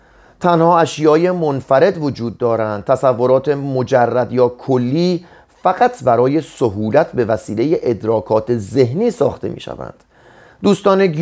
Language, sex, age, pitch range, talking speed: Persian, male, 30-49, 125-165 Hz, 105 wpm